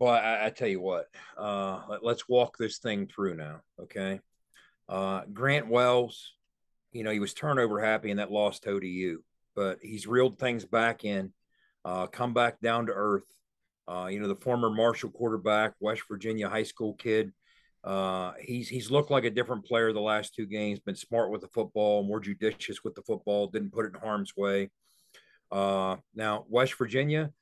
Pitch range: 105-125 Hz